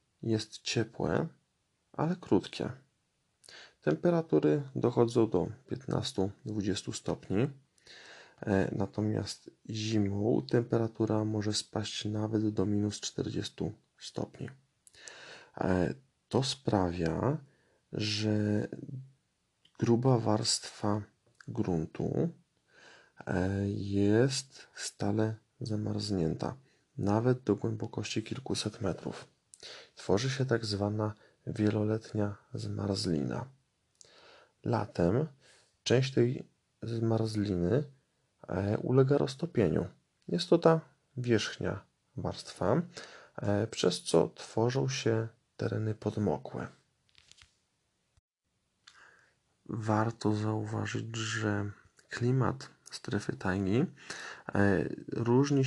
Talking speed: 70 wpm